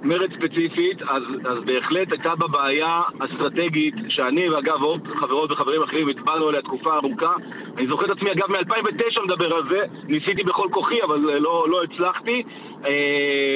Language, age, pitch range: Hebrew, 40-59, 145-230 Hz